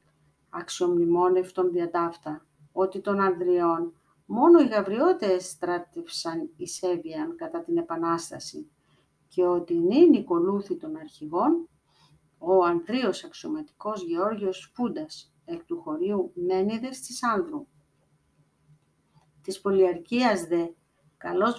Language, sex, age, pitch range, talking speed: Greek, female, 50-69, 170-240 Hz, 95 wpm